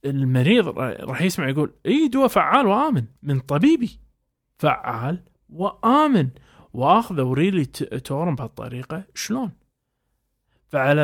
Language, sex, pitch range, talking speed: Arabic, male, 140-185 Hz, 100 wpm